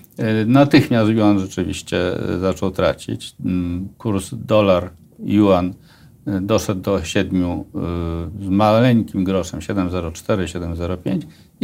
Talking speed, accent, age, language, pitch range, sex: 75 wpm, native, 50-69, Polish, 105-135 Hz, male